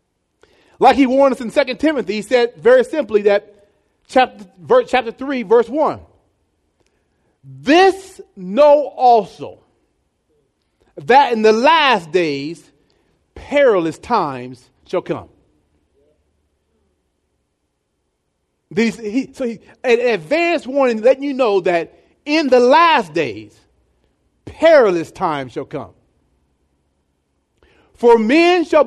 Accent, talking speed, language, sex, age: American, 110 wpm, English, male, 40-59